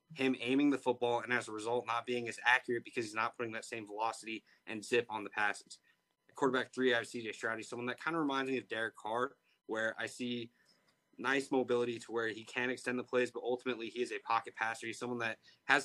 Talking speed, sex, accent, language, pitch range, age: 240 wpm, male, American, English, 115-135 Hz, 20-39